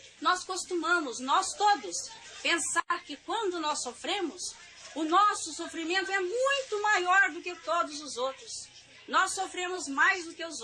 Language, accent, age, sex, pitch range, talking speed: Portuguese, Brazilian, 40-59, female, 295-385 Hz, 145 wpm